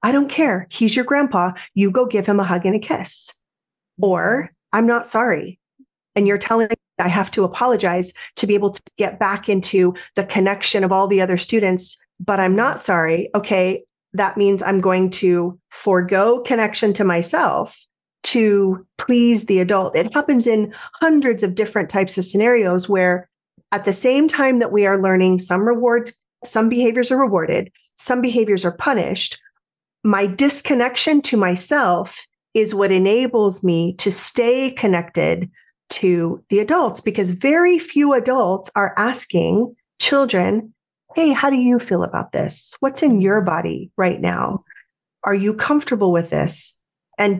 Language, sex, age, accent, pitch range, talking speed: English, female, 30-49, American, 185-240 Hz, 160 wpm